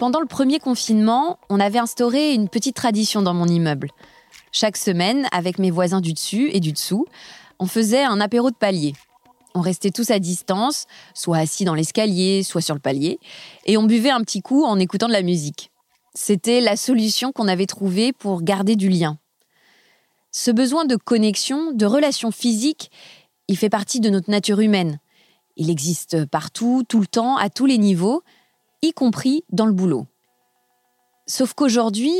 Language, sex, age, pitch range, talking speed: French, female, 20-39, 185-240 Hz, 175 wpm